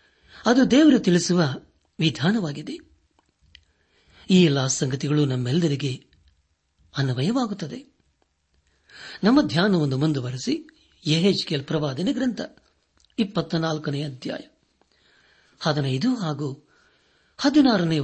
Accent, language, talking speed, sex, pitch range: native, Kannada, 75 wpm, male, 145-210 Hz